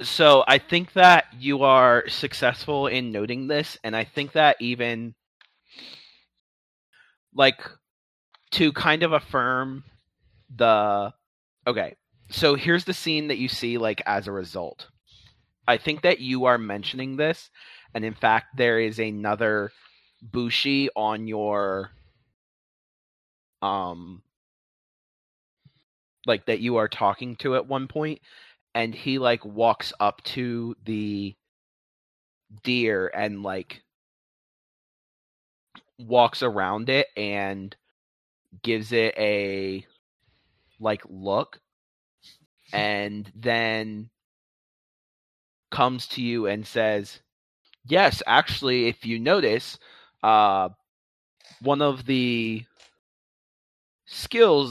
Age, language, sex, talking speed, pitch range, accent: 30-49, English, male, 105 wpm, 105-130 Hz, American